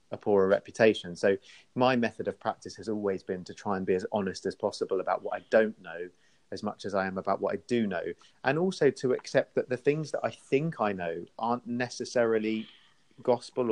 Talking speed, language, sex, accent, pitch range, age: 215 wpm, English, male, British, 100-125 Hz, 30-49